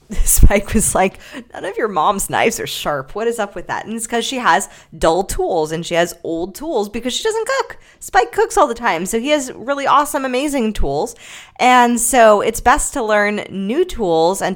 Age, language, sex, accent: 20-39, English, female, American